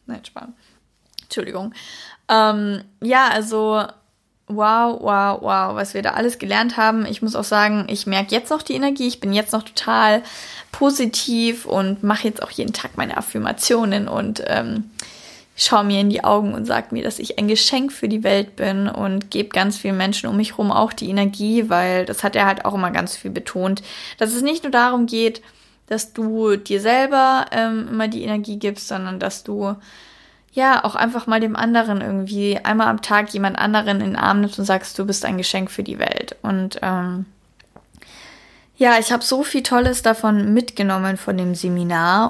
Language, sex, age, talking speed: German, female, 10-29, 190 wpm